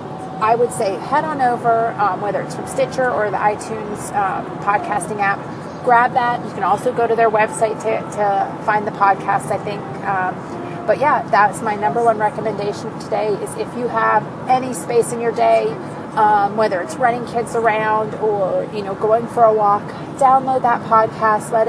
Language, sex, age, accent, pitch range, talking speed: English, female, 30-49, American, 200-240 Hz, 190 wpm